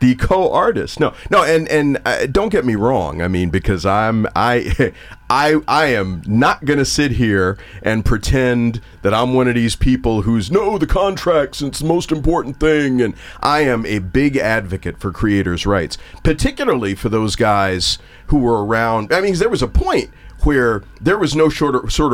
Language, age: English, 40-59